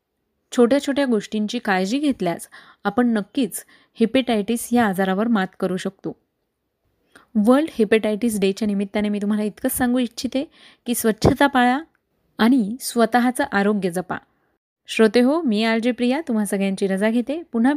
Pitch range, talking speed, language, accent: 210-280 Hz, 130 wpm, Marathi, native